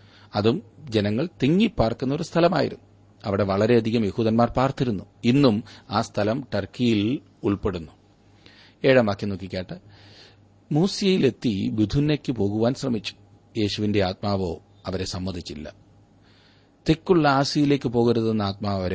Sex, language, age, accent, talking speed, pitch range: male, Malayalam, 40-59, native, 80 wpm, 100-120 Hz